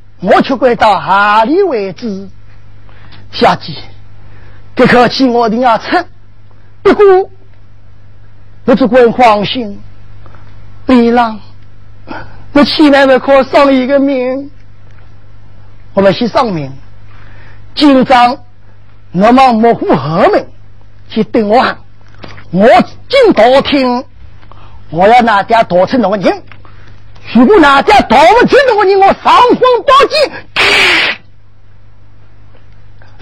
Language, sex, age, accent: Chinese, male, 30-49, native